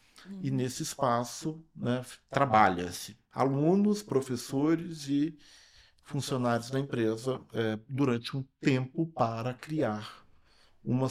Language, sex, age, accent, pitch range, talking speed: Portuguese, male, 40-59, Brazilian, 120-145 Hz, 90 wpm